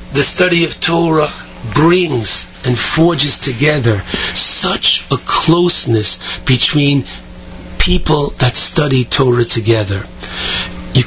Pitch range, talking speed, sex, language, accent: 115-150 Hz, 100 wpm, male, English, American